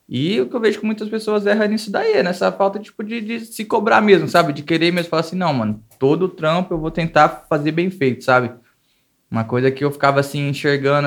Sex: male